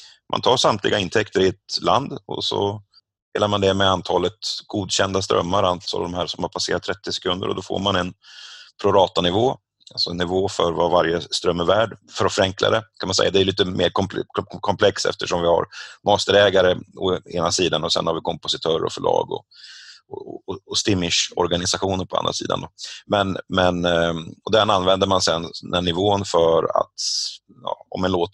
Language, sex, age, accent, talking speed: Swedish, male, 30-49, native, 180 wpm